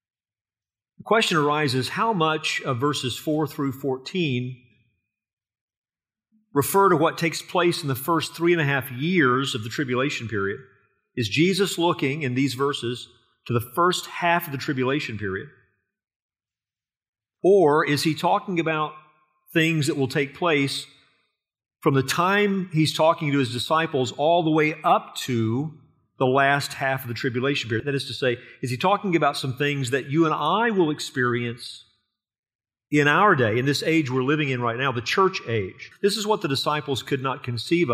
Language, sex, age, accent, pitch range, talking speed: English, male, 40-59, American, 120-160 Hz, 170 wpm